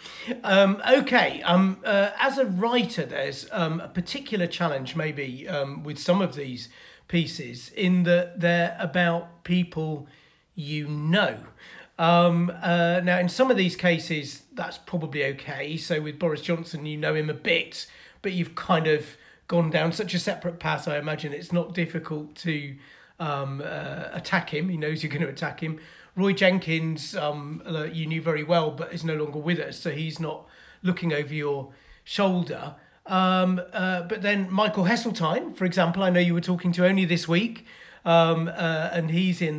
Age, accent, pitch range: 40-59, British, 155-185 Hz